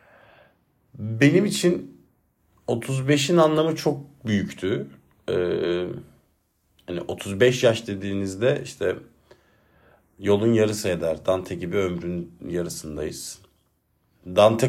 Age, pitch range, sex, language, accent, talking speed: 50-69, 95-130 Hz, male, Turkish, native, 80 wpm